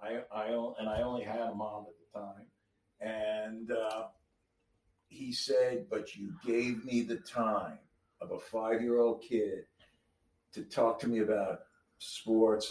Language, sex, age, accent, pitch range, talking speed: English, male, 50-69, American, 105-150 Hz, 145 wpm